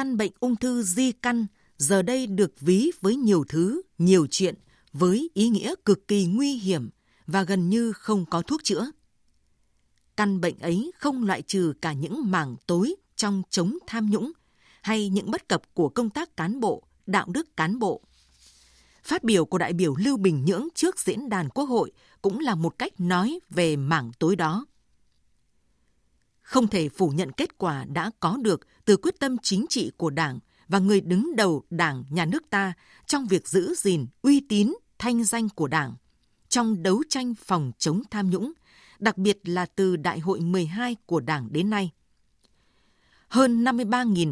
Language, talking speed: Vietnamese, 175 wpm